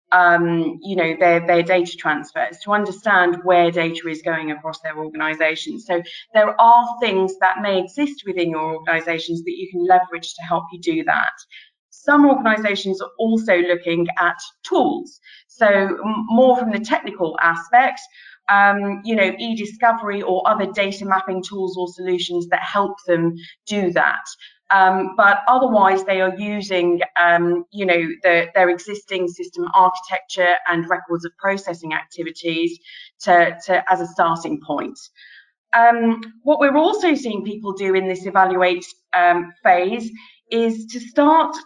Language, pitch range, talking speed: English, 175-225 Hz, 150 wpm